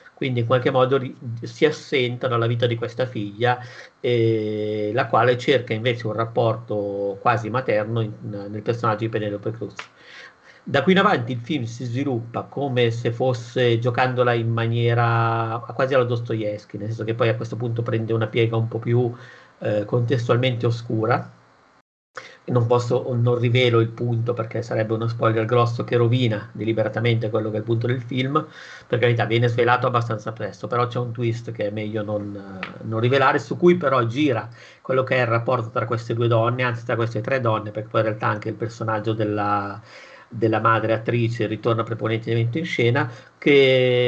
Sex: male